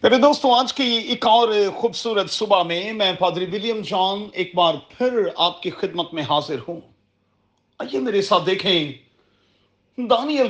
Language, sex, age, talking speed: Urdu, male, 40-59, 155 wpm